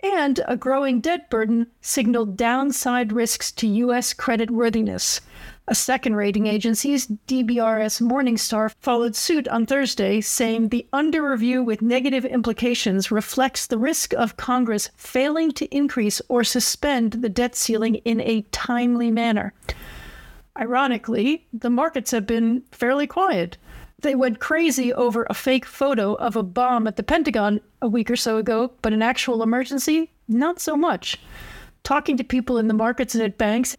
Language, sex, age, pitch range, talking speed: English, female, 50-69, 225-265 Hz, 150 wpm